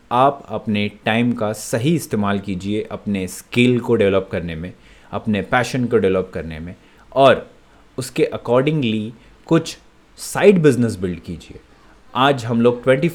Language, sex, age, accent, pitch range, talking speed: Hindi, male, 30-49, native, 105-130 Hz, 140 wpm